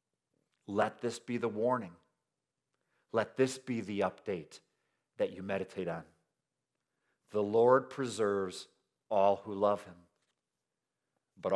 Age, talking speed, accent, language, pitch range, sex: 50-69, 115 wpm, American, English, 90-115 Hz, male